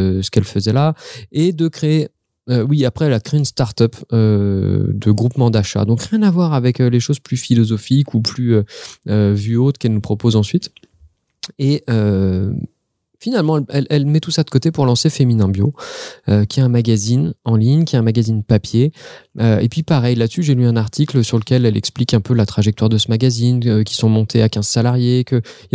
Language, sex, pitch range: French, male, 110-135 Hz